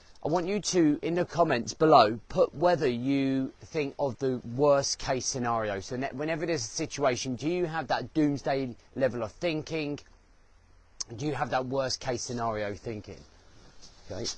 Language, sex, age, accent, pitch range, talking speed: English, male, 30-49, British, 100-145 Hz, 165 wpm